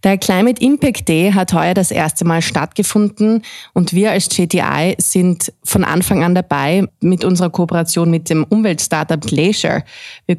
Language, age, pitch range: German, 20-39, 165-190 Hz